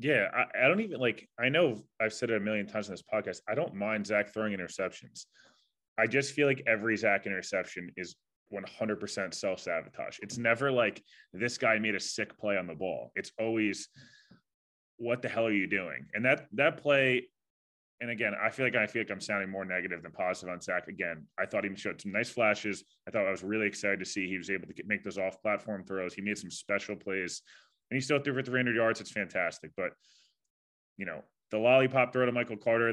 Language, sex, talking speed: English, male, 225 wpm